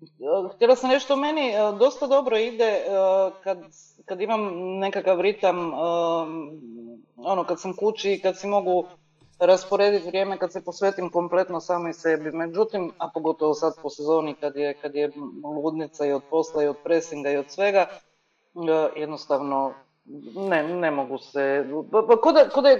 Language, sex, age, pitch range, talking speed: Croatian, female, 30-49, 165-225 Hz, 165 wpm